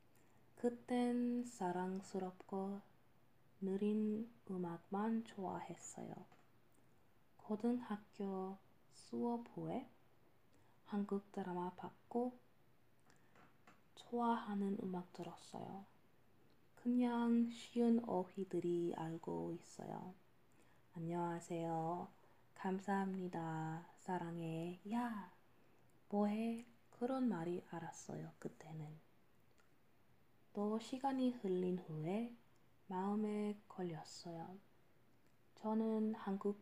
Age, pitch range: 20-39, 175-225 Hz